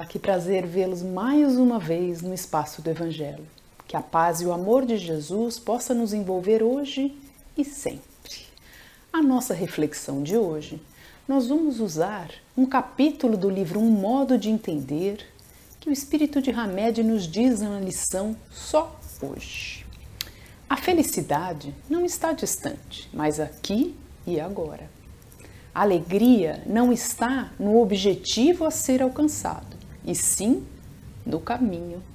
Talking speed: 135 wpm